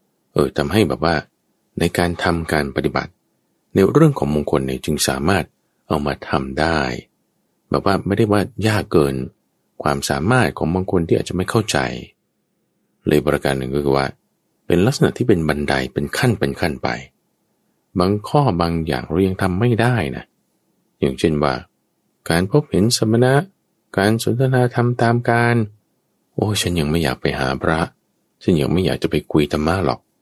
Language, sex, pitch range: English, male, 70-100 Hz